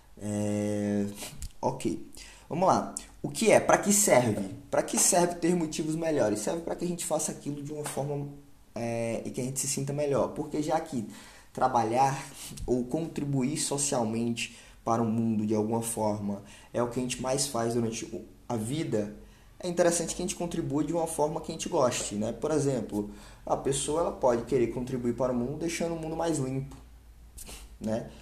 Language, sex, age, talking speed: Portuguese, male, 20-39, 190 wpm